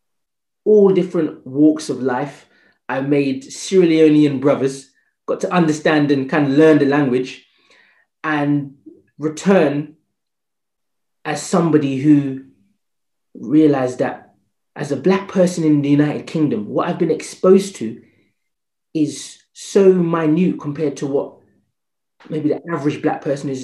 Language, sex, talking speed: English, male, 130 wpm